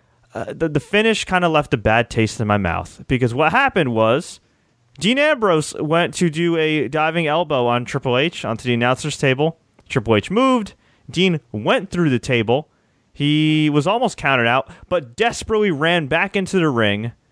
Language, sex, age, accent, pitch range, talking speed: English, male, 30-49, American, 120-180 Hz, 180 wpm